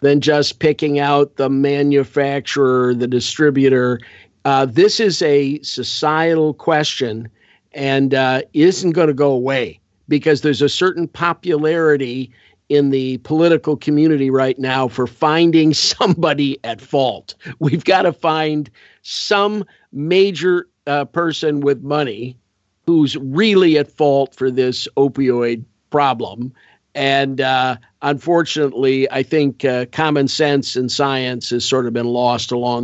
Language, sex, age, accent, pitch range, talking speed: English, male, 50-69, American, 130-155 Hz, 130 wpm